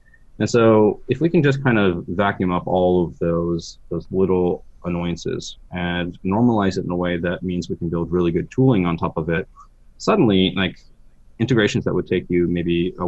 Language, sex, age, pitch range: English, male, 20-39, 85-95 Hz